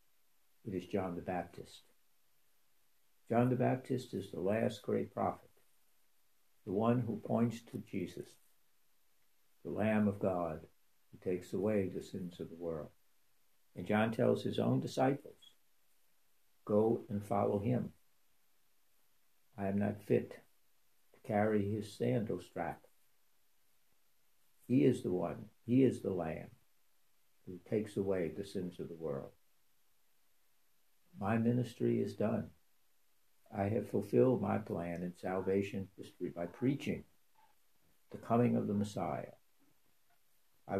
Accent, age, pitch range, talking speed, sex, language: American, 60-79, 95-120 Hz, 125 wpm, male, English